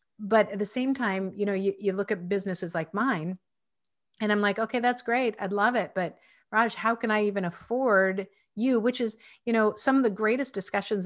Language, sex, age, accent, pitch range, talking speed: English, female, 40-59, American, 175-215 Hz, 215 wpm